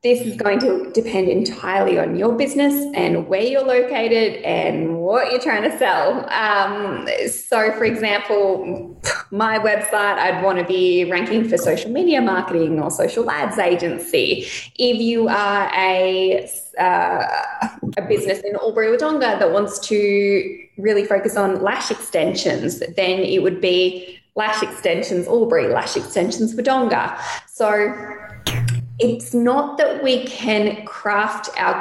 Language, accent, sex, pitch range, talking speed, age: English, Australian, female, 190-245 Hz, 140 wpm, 20-39